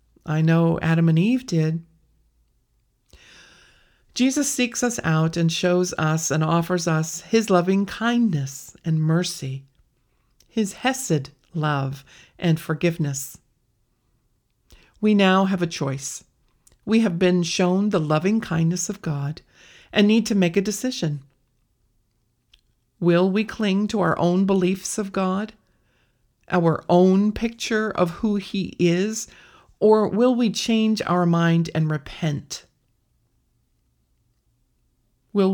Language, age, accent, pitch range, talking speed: English, 40-59, American, 155-200 Hz, 120 wpm